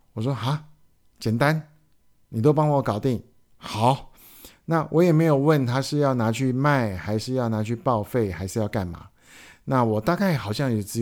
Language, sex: Chinese, male